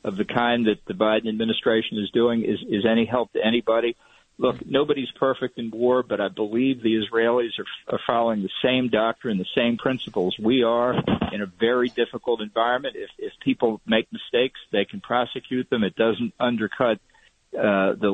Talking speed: 180 wpm